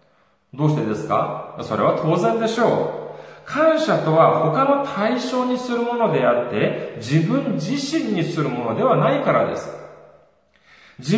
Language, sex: Japanese, male